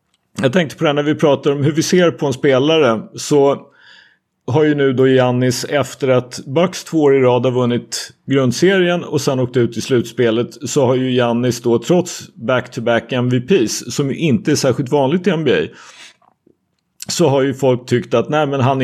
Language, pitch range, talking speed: Swedish, 125-155 Hz, 195 wpm